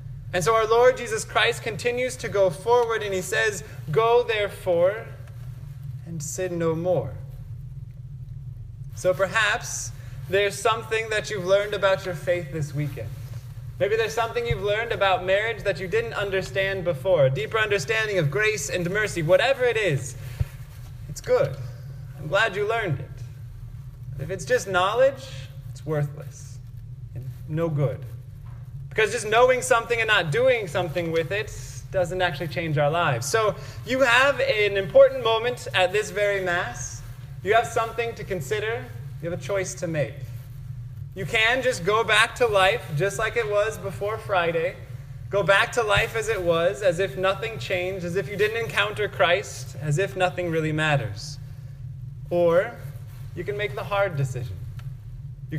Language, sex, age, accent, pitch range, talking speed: English, male, 20-39, American, 130-200 Hz, 160 wpm